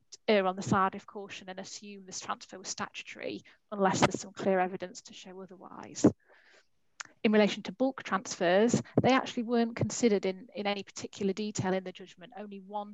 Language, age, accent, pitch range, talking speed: English, 30-49, British, 190-210 Hz, 180 wpm